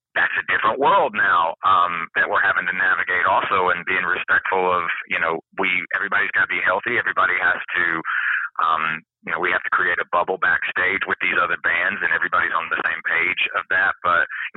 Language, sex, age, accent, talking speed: English, male, 30-49, American, 210 wpm